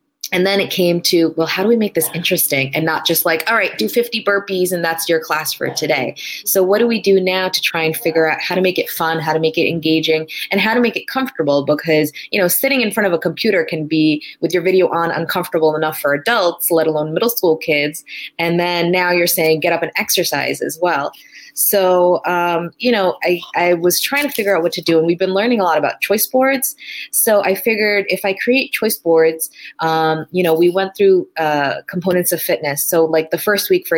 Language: English